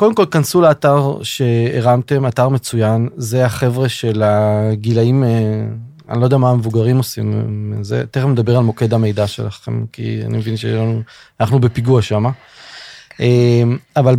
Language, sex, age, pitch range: Hebrew, male, 30-49, 115-145 Hz